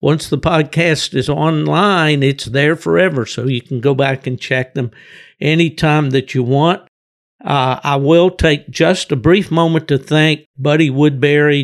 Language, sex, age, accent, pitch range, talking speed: English, male, 60-79, American, 130-150 Hz, 165 wpm